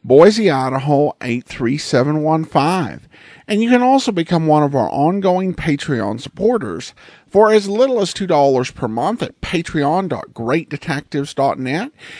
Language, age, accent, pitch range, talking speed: English, 50-69, American, 135-200 Hz, 115 wpm